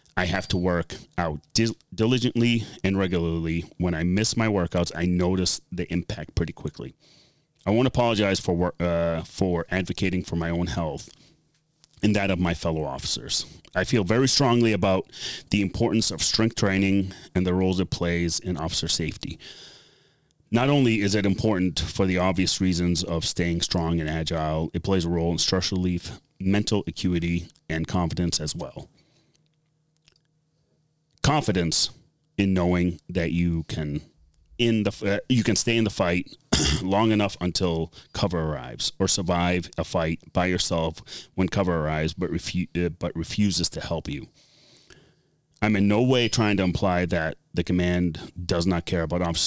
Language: English